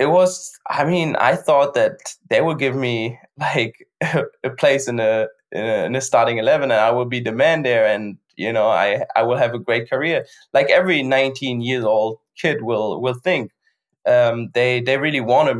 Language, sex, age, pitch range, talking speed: Danish, male, 20-39, 120-155 Hz, 195 wpm